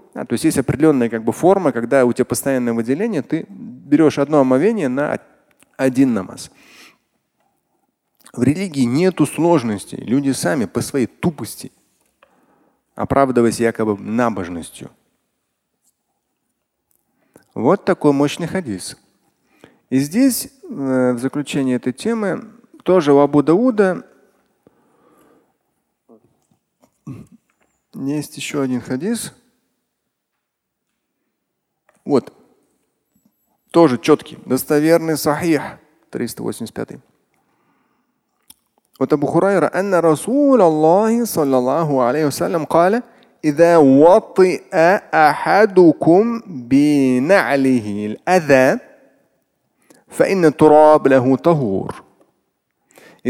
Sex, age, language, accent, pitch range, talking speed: male, 30-49, Russian, native, 130-180 Hz, 65 wpm